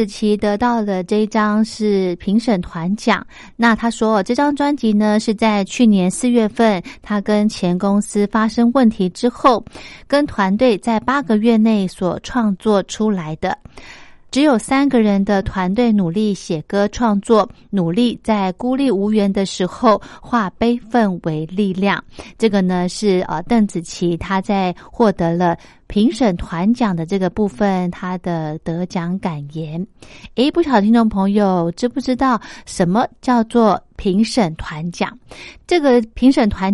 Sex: female